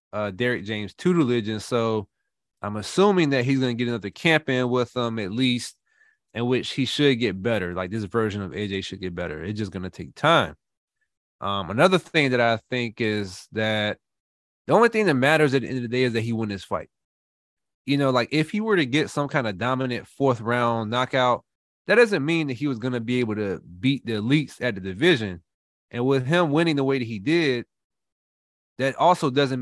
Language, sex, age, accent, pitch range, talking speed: English, male, 20-39, American, 110-140 Hz, 225 wpm